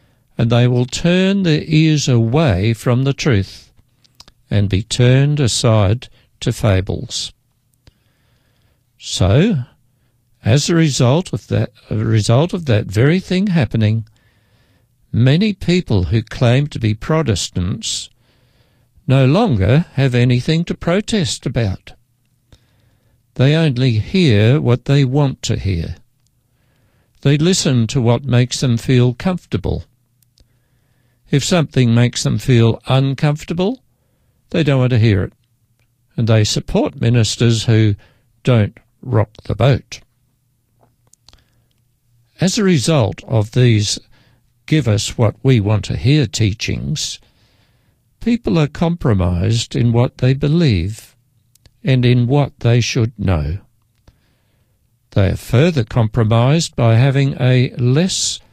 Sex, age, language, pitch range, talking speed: male, 60-79, English, 115-135 Hz, 115 wpm